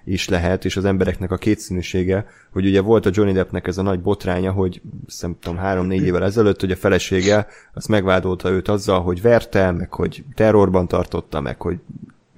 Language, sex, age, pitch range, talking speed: Hungarian, male, 30-49, 95-115 Hz, 185 wpm